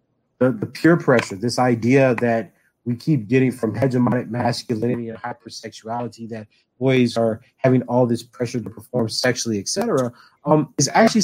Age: 30-49